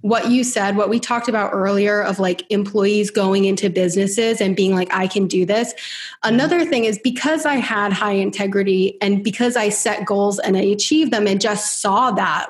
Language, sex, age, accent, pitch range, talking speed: English, female, 20-39, American, 200-235 Hz, 200 wpm